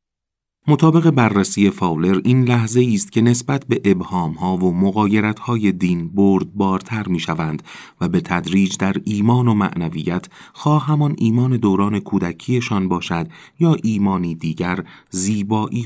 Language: Persian